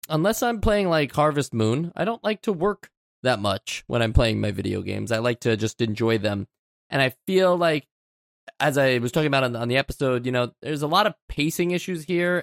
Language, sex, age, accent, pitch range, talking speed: English, male, 20-39, American, 115-165 Hz, 220 wpm